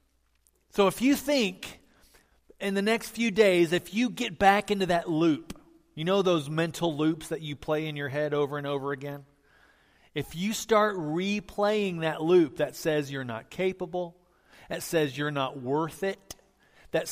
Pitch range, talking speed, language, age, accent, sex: 155-210 Hz, 170 wpm, English, 40-59, American, male